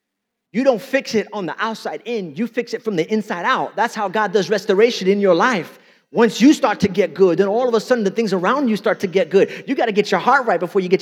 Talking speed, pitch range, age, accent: 285 wpm, 195-250 Hz, 30-49, American